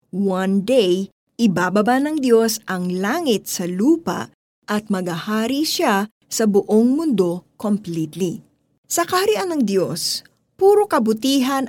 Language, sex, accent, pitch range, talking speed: Filipino, female, native, 185-250 Hz, 115 wpm